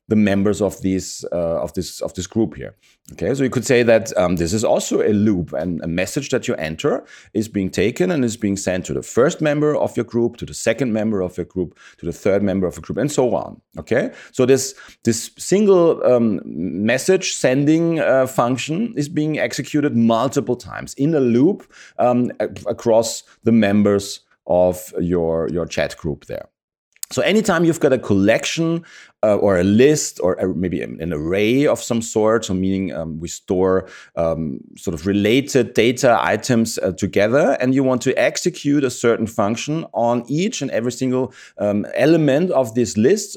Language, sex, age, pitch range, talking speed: English, male, 40-59, 95-130 Hz, 190 wpm